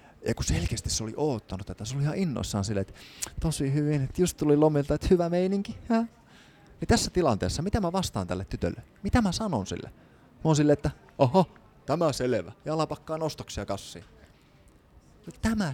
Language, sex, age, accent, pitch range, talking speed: Finnish, male, 30-49, native, 105-155 Hz, 180 wpm